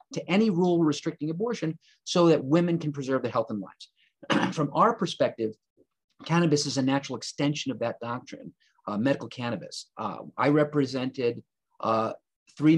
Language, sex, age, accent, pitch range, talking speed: English, male, 40-59, American, 130-165 Hz, 155 wpm